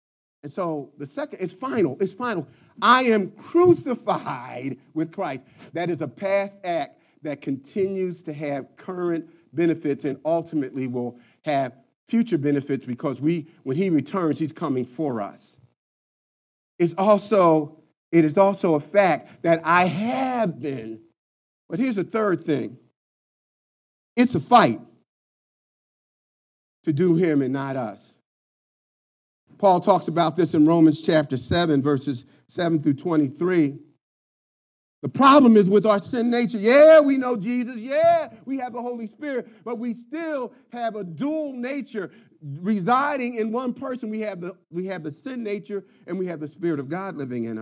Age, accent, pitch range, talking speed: 40-59, American, 155-235 Hz, 150 wpm